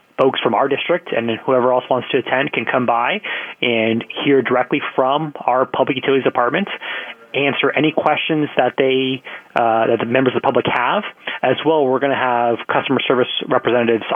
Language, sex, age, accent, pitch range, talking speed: English, male, 30-49, American, 115-135 Hz, 170 wpm